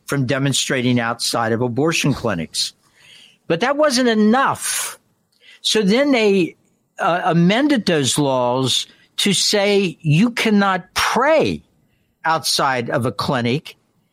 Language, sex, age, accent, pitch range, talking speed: English, male, 60-79, American, 150-235 Hz, 110 wpm